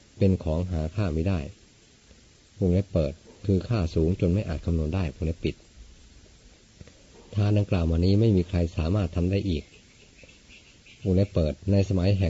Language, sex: Thai, male